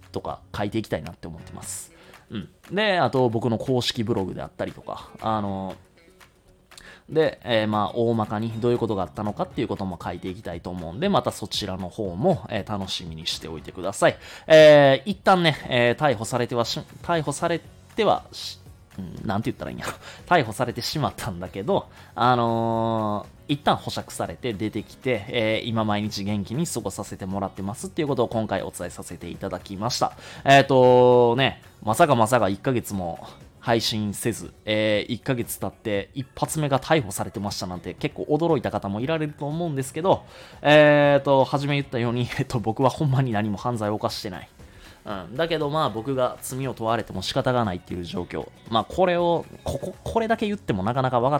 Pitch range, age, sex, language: 100-135 Hz, 20-39, male, Japanese